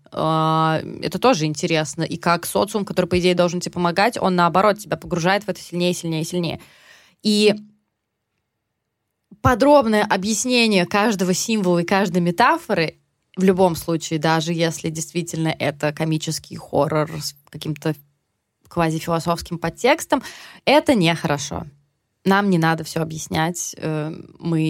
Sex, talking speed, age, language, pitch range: female, 125 wpm, 20-39, Russian, 160-195 Hz